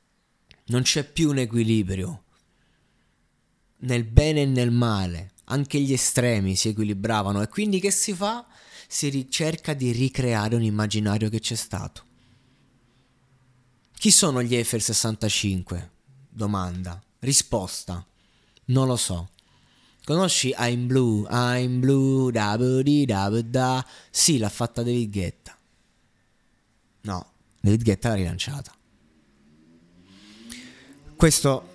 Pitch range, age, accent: 100-130 Hz, 20-39, native